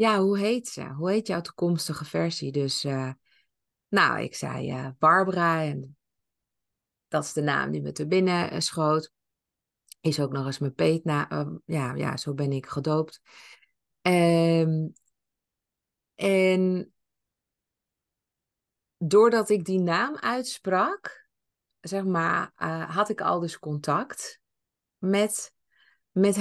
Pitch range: 155-190 Hz